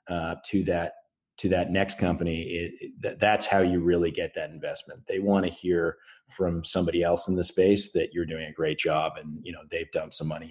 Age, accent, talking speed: 30-49, American, 225 wpm